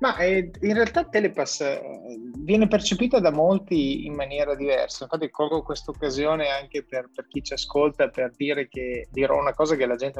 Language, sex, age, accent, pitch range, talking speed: Italian, male, 20-39, native, 120-155 Hz, 180 wpm